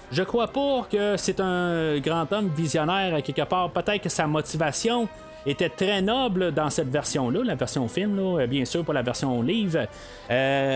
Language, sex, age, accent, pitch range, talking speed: French, male, 30-49, Canadian, 130-180 Hz, 180 wpm